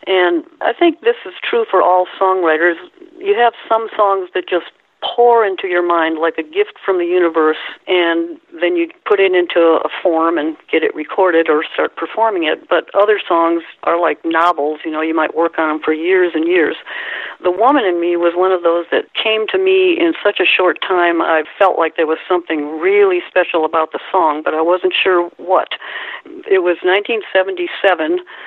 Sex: female